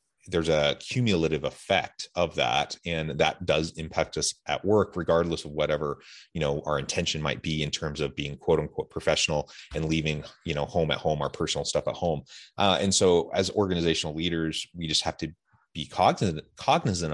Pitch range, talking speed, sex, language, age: 80-95 Hz, 190 wpm, male, English, 30-49